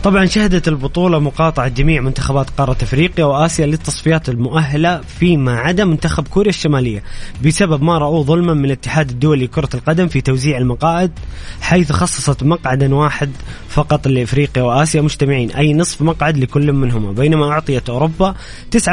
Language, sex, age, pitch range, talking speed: Arabic, male, 20-39, 135-165 Hz, 145 wpm